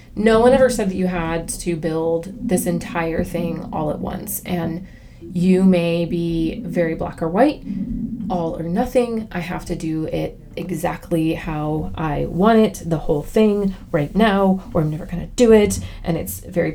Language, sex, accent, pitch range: English, female, American, 165-195 Hz